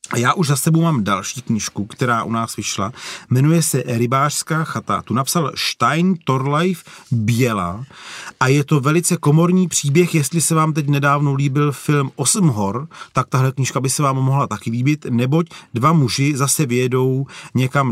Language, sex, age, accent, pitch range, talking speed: Czech, male, 40-59, native, 130-155 Hz, 170 wpm